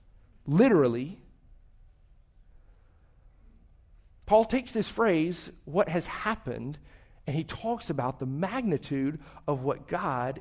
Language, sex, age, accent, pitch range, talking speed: English, male, 40-59, American, 125-200 Hz, 100 wpm